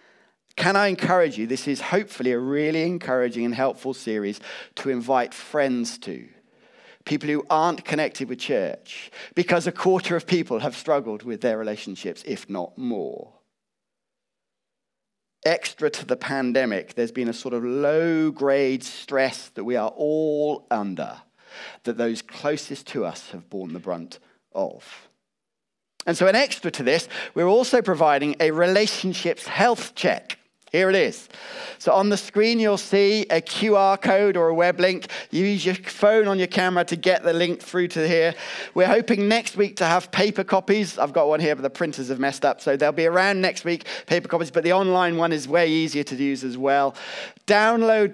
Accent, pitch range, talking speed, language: British, 140-190 Hz, 180 wpm, English